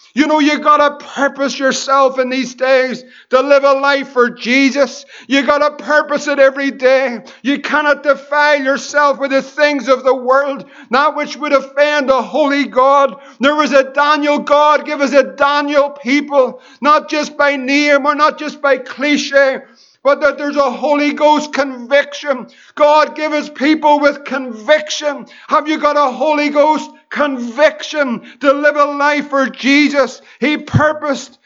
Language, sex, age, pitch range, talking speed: English, male, 50-69, 270-295 Hz, 160 wpm